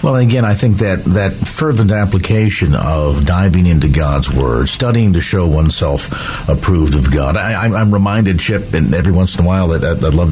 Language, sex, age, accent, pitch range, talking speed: English, male, 50-69, American, 85-115 Hz, 190 wpm